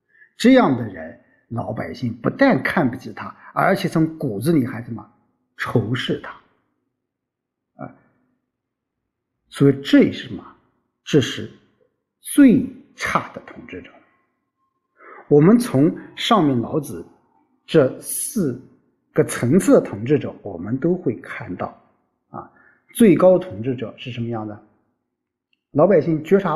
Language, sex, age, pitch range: Chinese, male, 50-69, 120-175 Hz